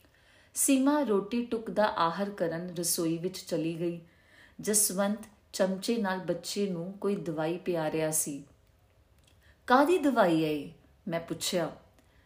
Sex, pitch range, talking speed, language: female, 170-230 Hz, 120 wpm, Punjabi